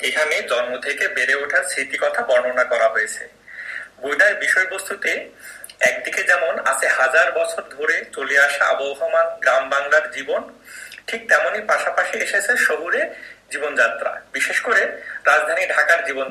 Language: Bengali